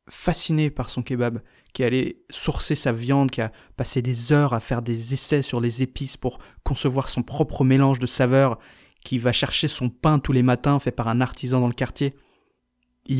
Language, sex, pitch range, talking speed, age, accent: French, male, 120-140 Hz, 200 wpm, 20-39, French